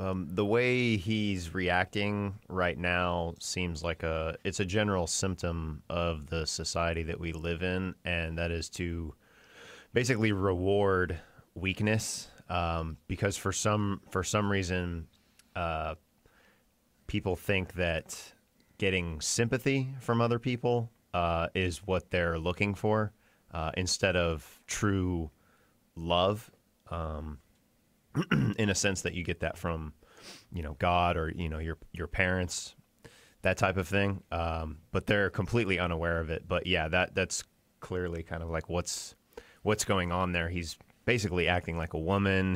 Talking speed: 145 wpm